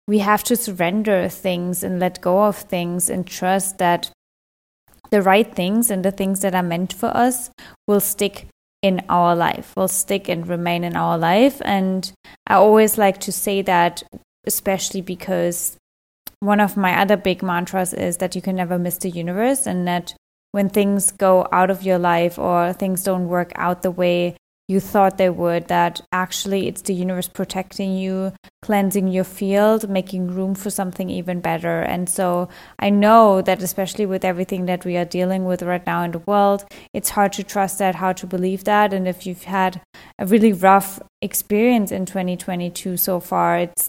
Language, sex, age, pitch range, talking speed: English, female, 20-39, 180-200 Hz, 185 wpm